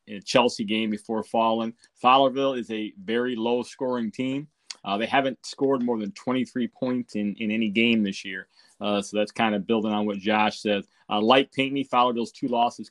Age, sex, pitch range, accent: 30-49, male, 105-125 Hz, American